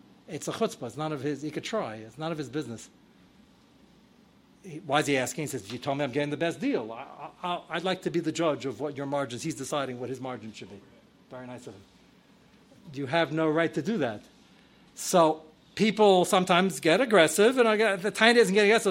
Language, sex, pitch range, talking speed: English, male, 160-230 Hz, 230 wpm